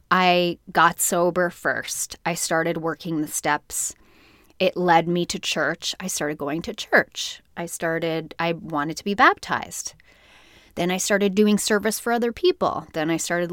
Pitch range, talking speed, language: 165-205 Hz, 165 wpm, English